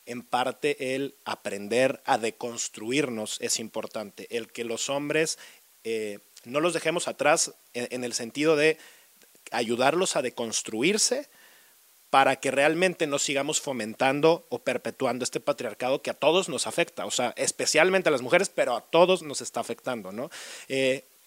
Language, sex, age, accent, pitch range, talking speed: Spanish, male, 30-49, Mexican, 135-170 Hz, 150 wpm